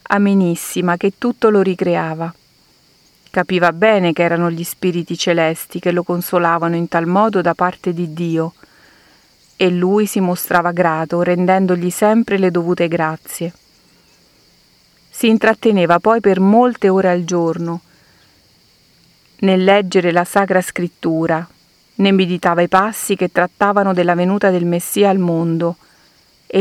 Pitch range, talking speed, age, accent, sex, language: 170-200 Hz, 130 wpm, 40-59, native, female, Italian